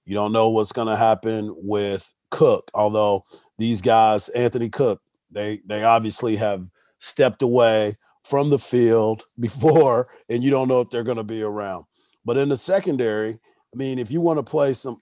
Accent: American